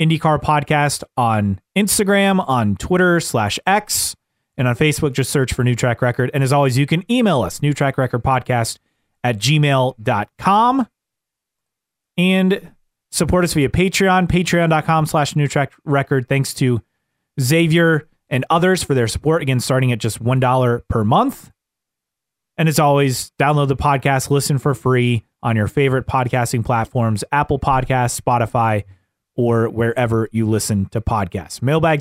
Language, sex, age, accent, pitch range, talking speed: English, male, 30-49, American, 120-160 Hz, 140 wpm